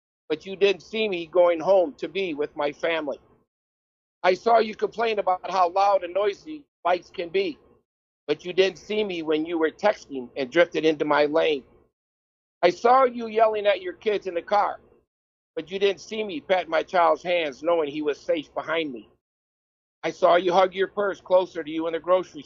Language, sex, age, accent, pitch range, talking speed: English, male, 50-69, American, 145-200 Hz, 200 wpm